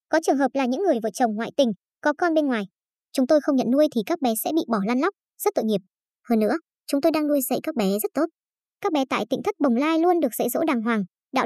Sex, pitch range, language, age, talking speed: male, 235-315 Hz, Vietnamese, 20-39, 290 wpm